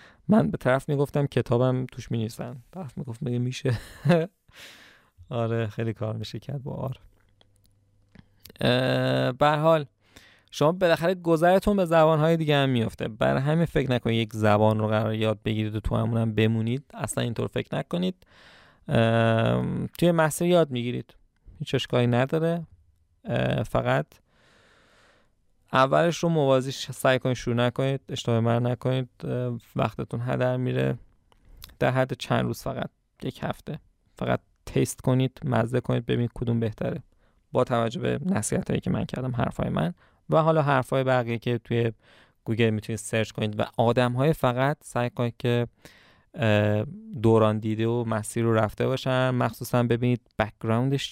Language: Persian